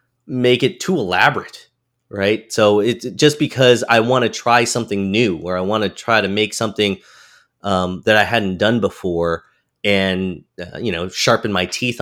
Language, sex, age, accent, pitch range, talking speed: English, male, 30-49, American, 105-125 Hz, 180 wpm